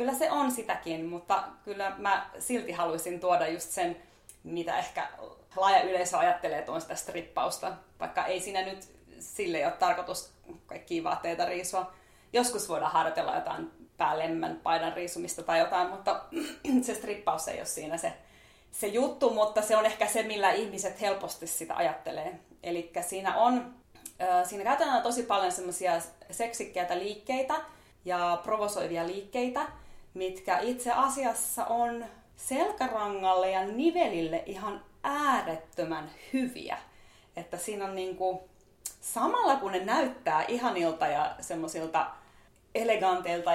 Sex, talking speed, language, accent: female, 125 wpm, Finnish, native